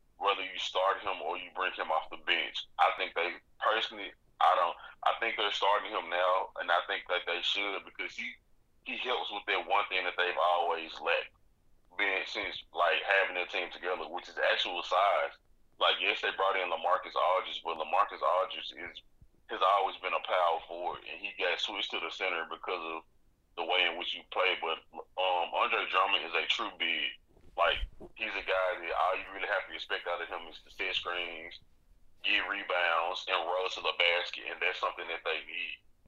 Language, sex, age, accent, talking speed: English, male, 20-39, American, 205 wpm